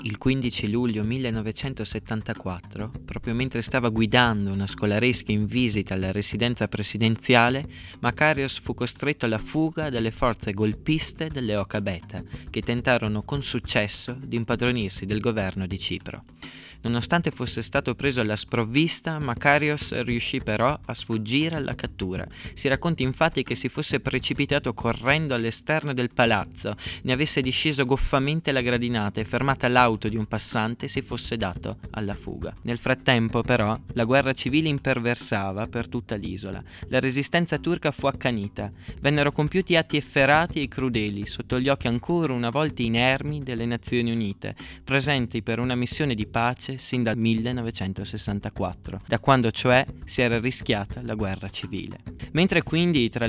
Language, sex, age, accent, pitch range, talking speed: Italian, male, 20-39, native, 110-135 Hz, 145 wpm